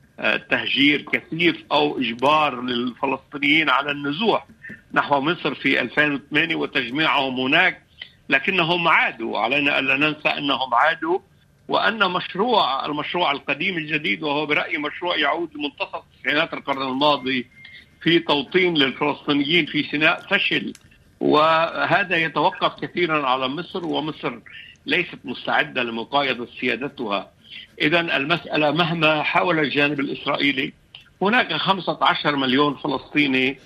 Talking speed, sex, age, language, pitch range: 110 wpm, male, 60-79, Arabic, 140-160 Hz